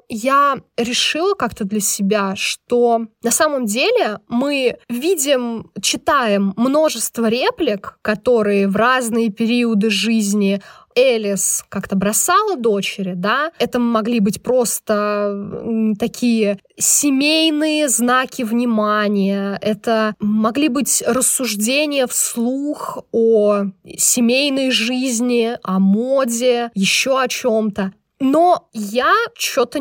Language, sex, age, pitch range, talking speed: Russian, female, 20-39, 215-285 Hz, 95 wpm